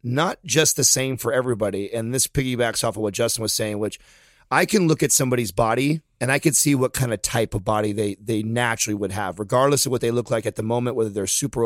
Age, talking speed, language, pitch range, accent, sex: 30-49, 250 wpm, English, 115-135 Hz, American, male